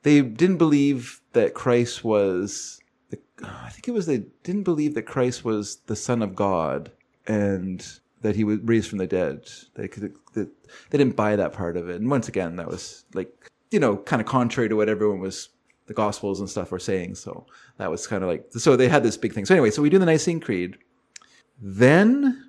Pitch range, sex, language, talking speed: 100-125 Hz, male, English, 215 wpm